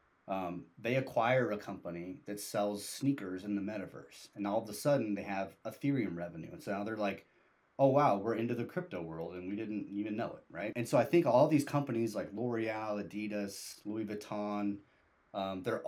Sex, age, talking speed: male, 30-49, 200 wpm